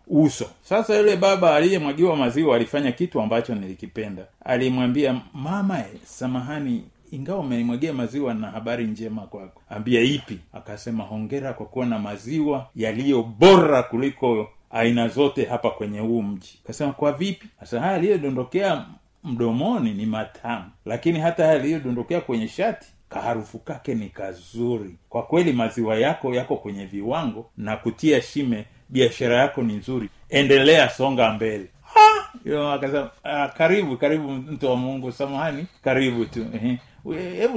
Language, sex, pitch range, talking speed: Swahili, male, 120-185 Hz, 135 wpm